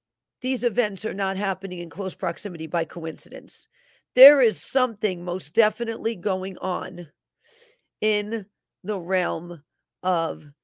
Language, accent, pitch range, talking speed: English, American, 175-205 Hz, 120 wpm